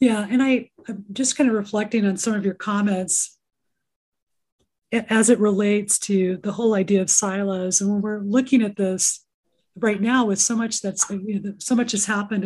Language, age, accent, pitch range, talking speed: English, 30-49, American, 195-225 Hz, 180 wpm